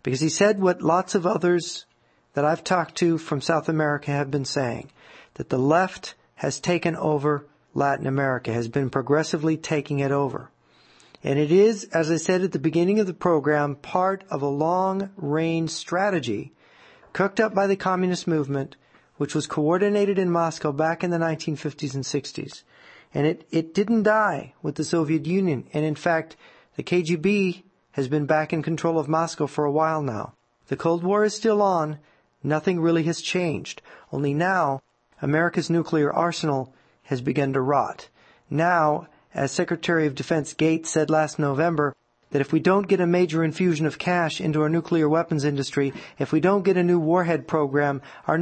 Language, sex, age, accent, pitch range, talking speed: English, male, 40-59, American, 145-180 Hz, 175 wpm